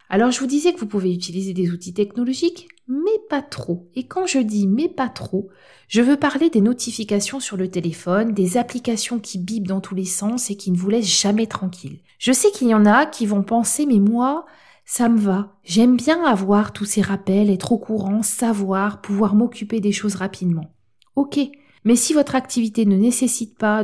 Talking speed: 215 wpm